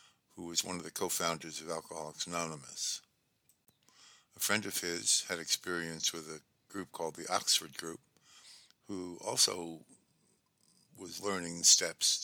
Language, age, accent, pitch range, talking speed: English, 60-79, American, 80-90 Hz, 130 wpm